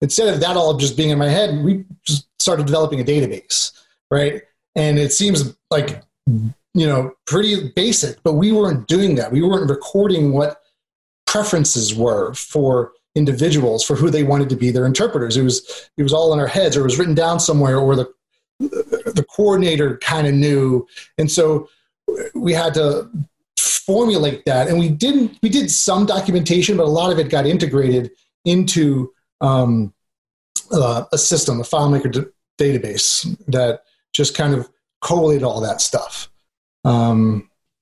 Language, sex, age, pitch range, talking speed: English, male, 30-49, 130-165 Hz, 165 wpm